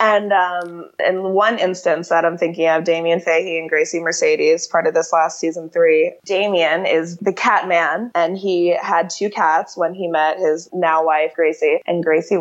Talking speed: 190 wpm